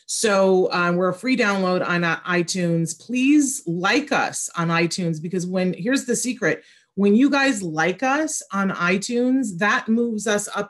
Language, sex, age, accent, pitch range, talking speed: English, female, 30-49, American, 160-195 Hz, 170 wpm